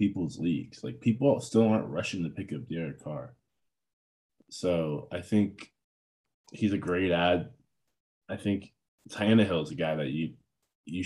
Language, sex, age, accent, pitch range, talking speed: English, male, 20-39, American, 80-105 Hz, 155 wpm